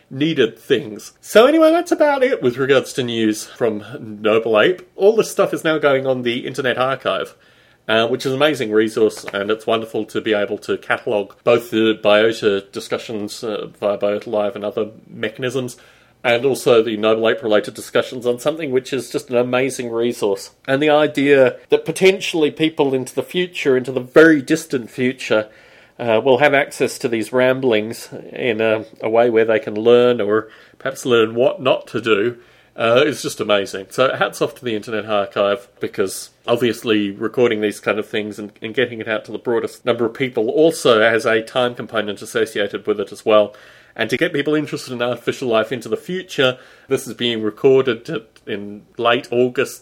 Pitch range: 110-135 Hz